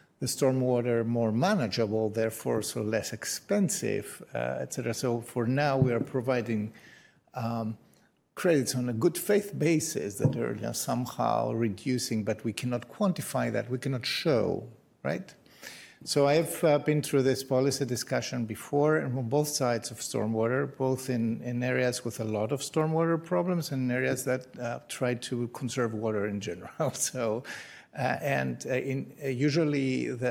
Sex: male